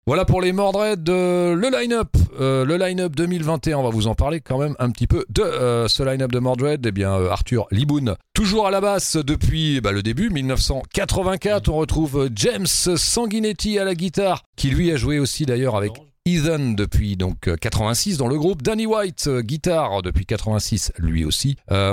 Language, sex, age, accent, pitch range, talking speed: French, male, 40-59, French, 105-170 Hz, 195 wpm